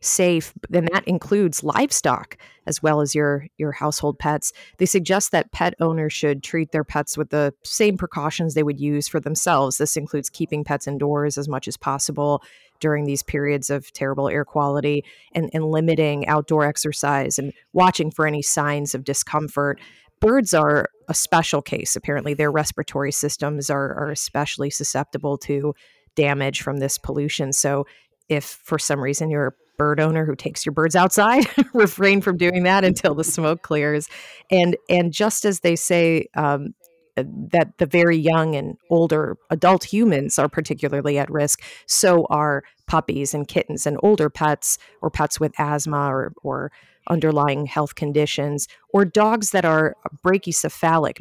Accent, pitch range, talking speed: American, 145-165 Hz, 160 wpm